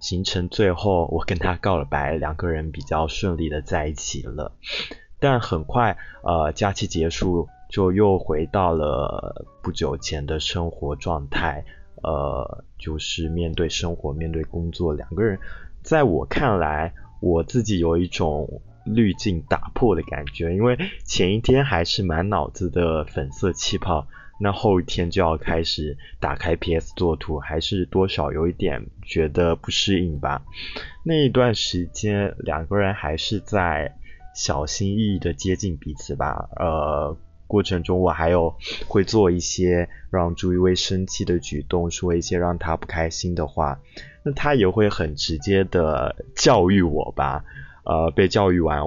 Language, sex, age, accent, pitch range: Chinese, male, 20-39, native, 80-95 Hz